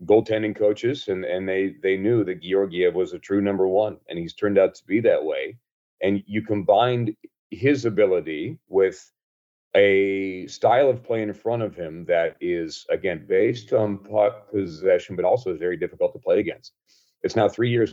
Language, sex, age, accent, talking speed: English, male, 40-59, American, 175 wpm